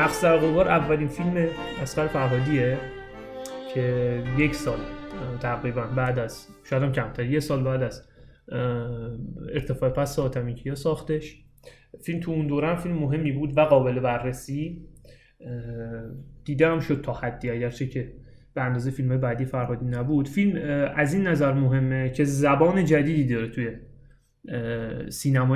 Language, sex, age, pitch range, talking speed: Persian, male, 30-49, 125-150 Hz, 135 wpm